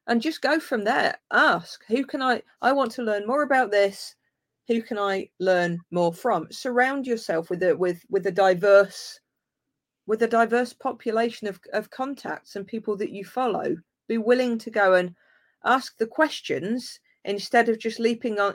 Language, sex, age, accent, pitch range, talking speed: English, female, 40-59, British, 200-275 Hz, 175 wpm